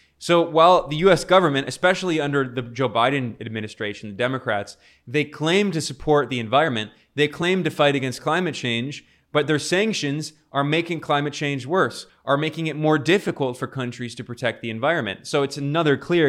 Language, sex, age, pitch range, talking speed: English, male, 20-39, 120-150 Hz, 180 wpm